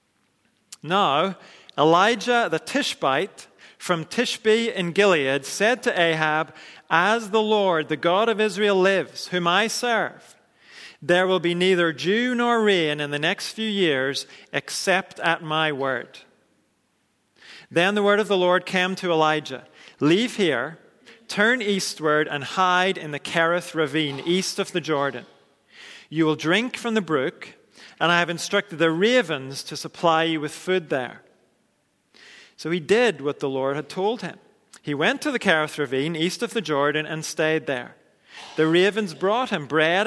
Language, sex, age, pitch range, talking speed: English, male, 40-59, 155-205 Hz, 160 wpm